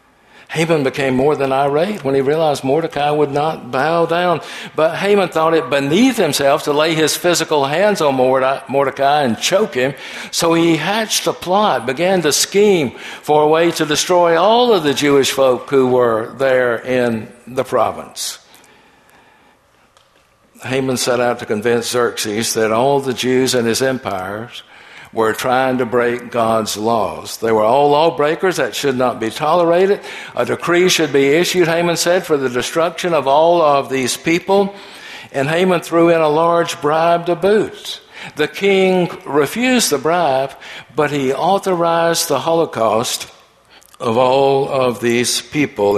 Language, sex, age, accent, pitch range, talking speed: English, male, 60-79, American, 125-170 Hz, 155 wpm